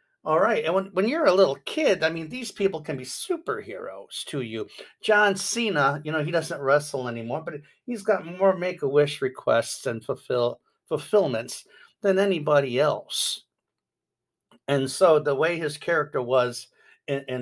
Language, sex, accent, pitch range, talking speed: English, male, American, 135-190 Hz, 160 wpm